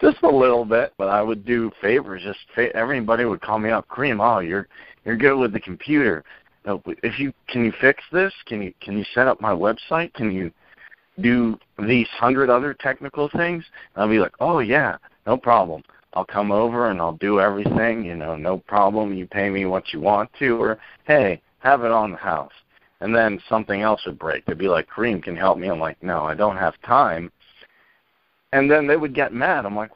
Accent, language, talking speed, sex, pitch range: American, English, 220 wpm, male, 95-120 Hz